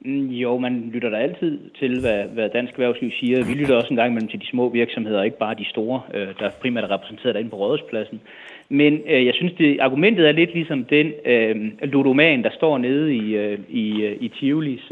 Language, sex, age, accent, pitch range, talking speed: Danish, male, 30-49, native, 115-145 Hz, 215 wpm